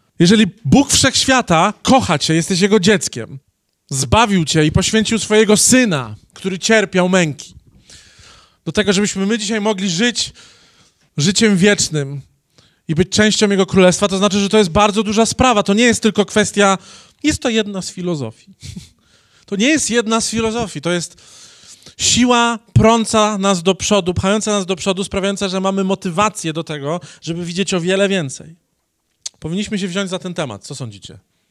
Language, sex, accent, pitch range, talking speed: Polish, male, native, 165-215 Hz, 160 wpm